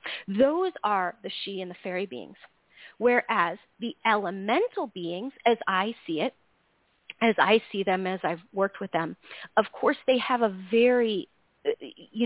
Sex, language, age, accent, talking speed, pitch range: female, English, 30-49, American, 155 wpm, 190-245 Hz